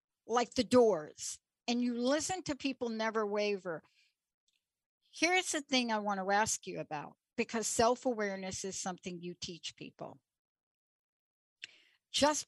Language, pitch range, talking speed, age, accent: English, 180-240 Hz, 130 wpm, 60-79, American